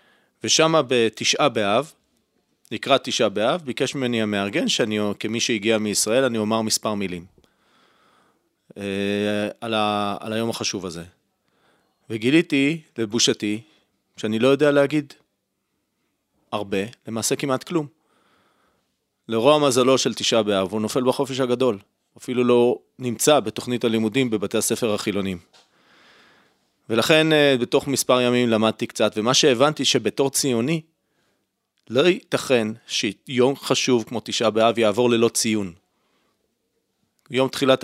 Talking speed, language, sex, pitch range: 115 wpm, Hebrew, male, 110-135 Hz